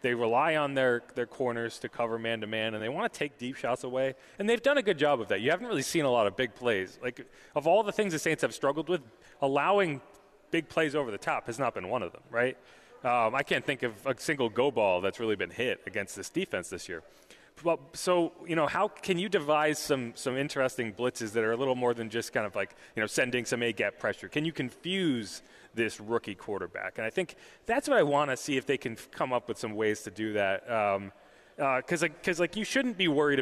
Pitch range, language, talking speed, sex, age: 115-150 Hz, English, 250 wpm, male, 30-49